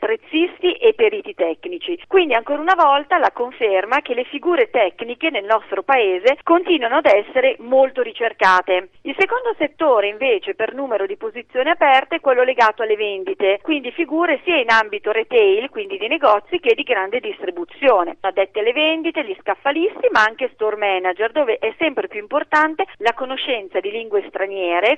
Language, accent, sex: Italian, native, female